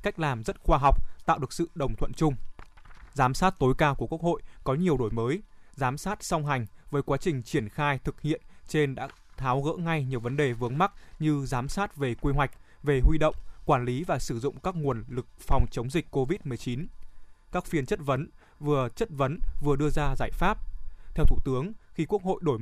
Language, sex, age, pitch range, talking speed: Vietnamese, male, 20-39, 130-165 Hz, 220 wpm